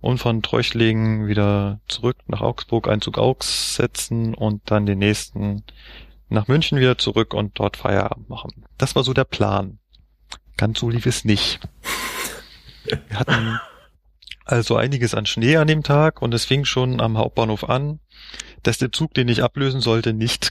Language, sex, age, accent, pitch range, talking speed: German, male, 30-49, German, 105-125 Hz, 165 wpm